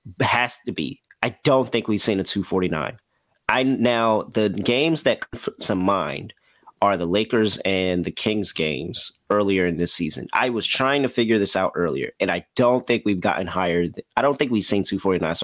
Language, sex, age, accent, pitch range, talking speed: English, male, 30-49, American, 90-115 Hz, 200 wpm